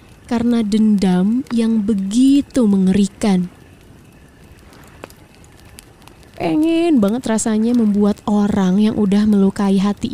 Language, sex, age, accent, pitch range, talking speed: Indonesian, female, 20-39, native, 210-275 Hz, 85 wpm